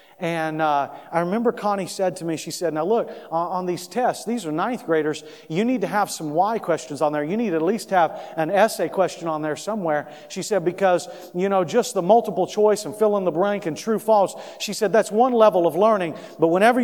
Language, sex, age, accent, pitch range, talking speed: English, male, 40-59, American, 140-185 Hz, 235 wpm